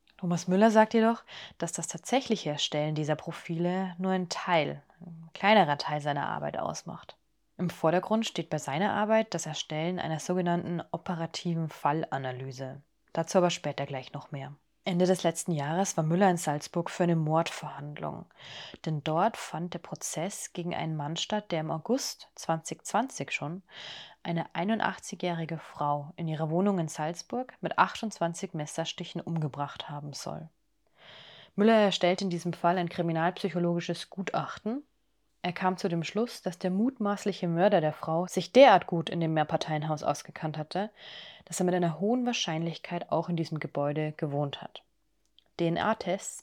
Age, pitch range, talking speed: 20-39, 155-190 Hz, 150 wpm